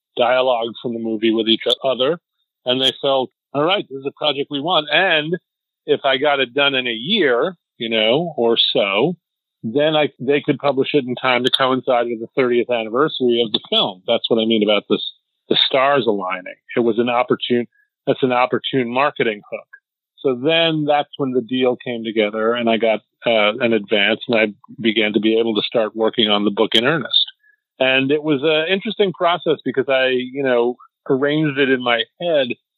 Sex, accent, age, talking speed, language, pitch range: male, American, 40-59, 200 wpm, English, 120-145 Hz